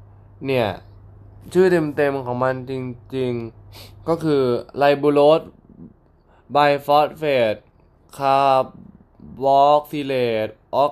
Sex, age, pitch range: male, 10-29, 105-150 Hz